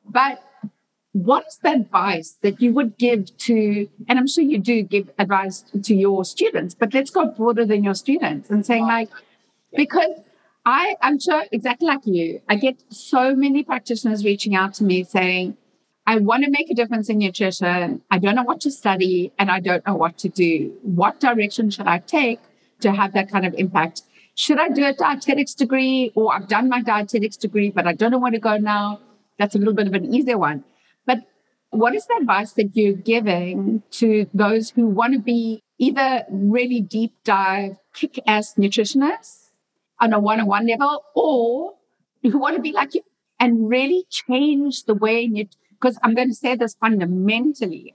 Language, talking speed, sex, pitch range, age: English, 190 wpm, female, 200-255 Hz, 60-79